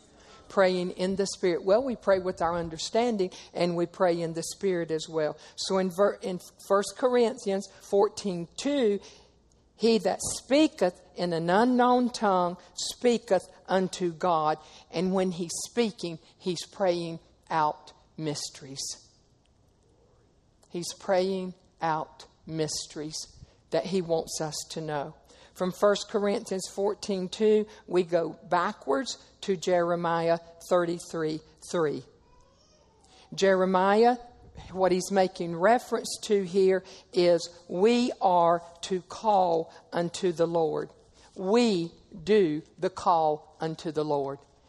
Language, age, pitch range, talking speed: English, 50-69, 165-205 Hz, 115 wpm